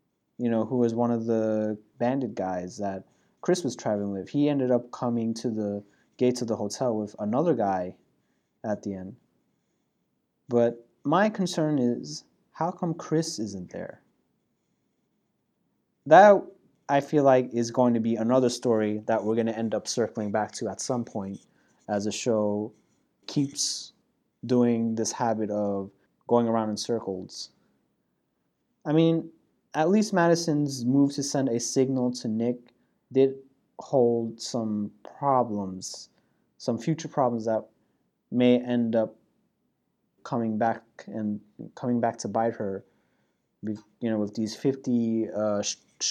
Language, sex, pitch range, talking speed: English, male, 110-135 Hz, 145 wpm